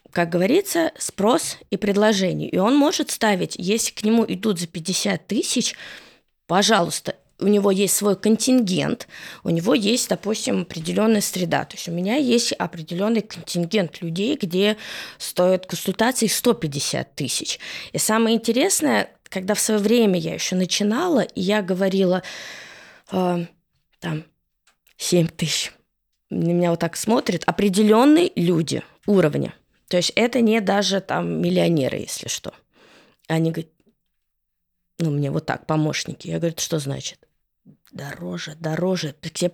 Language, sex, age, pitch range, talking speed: Russian, female, 20-39, 170-220 Hz, 130 wpm